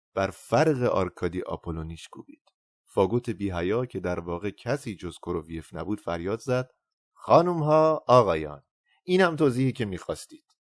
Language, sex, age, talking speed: Persian, male, 30-49, 130 wpm